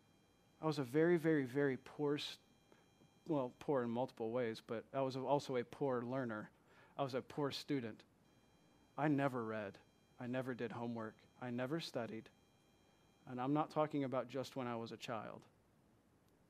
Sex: male